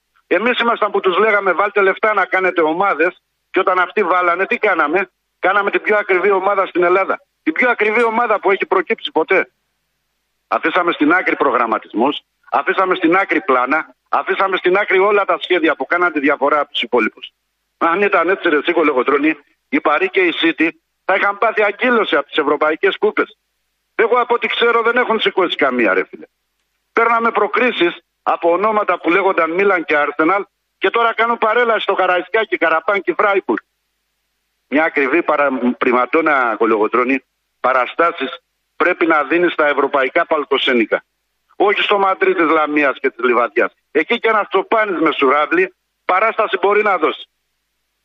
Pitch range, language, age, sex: 160-215 Hz, Greek, 50-69, male